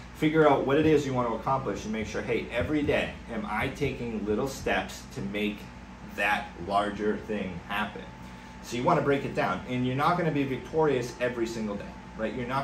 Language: English